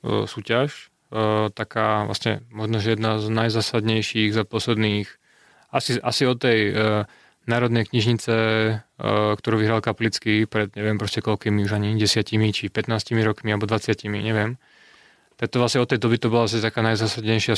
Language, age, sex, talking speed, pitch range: Slovak, 20-39, male, 150 wpm, 110-120 Hz